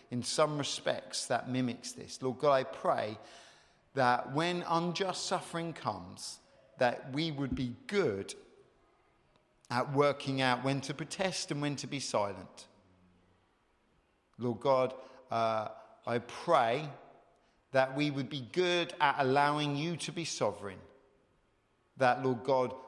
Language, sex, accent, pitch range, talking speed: English, male, British, 130-175 Hz, 130 wpm